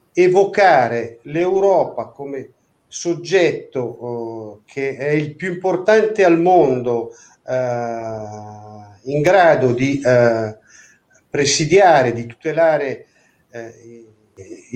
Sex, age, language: male, 50-69, Italian